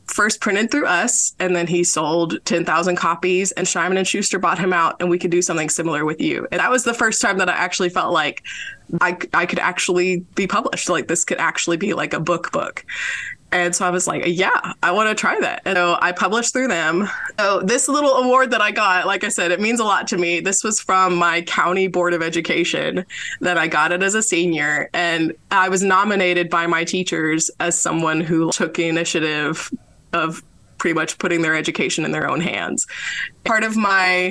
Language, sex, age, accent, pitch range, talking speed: English, female, 20-39, American, 170-205 Hz, 215 wpm